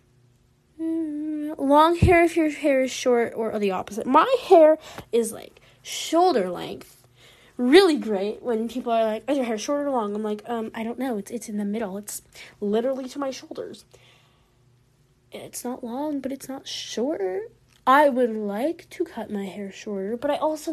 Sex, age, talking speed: female, 10-29, 180 wpm